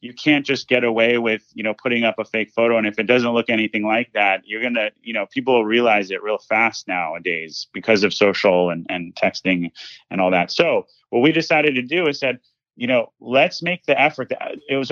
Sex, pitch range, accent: male, 110-135 Hz, American